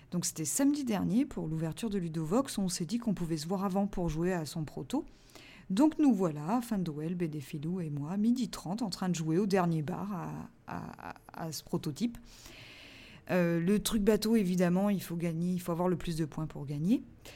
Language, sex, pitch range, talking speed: French, female, 160-220 Hz, 200 wpm